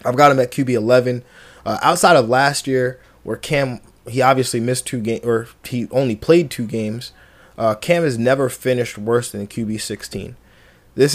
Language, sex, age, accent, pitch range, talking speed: English, male, 20-39, American, 120-140 Hz, 165 wpm